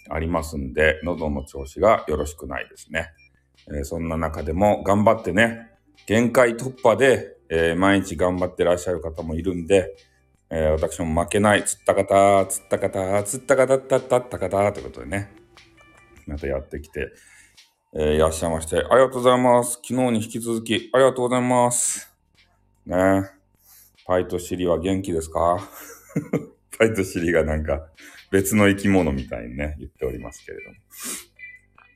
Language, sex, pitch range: Japanese, male, 80-105 Hz